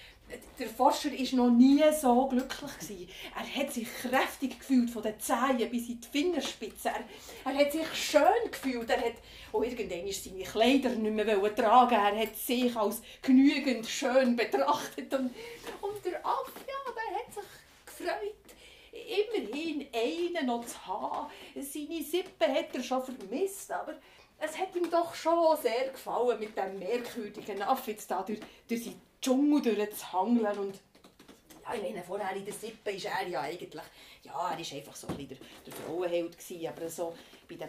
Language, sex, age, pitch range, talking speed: German, female, 40-59, 215-295 Hz, 155 wpm